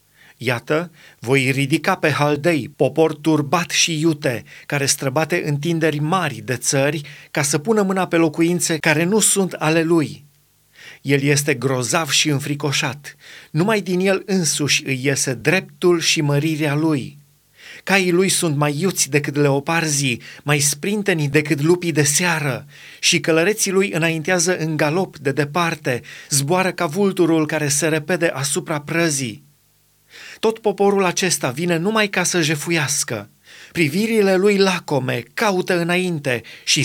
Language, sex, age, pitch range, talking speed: Romanian, male, 30-49, 145-180 Hz, 135 wpm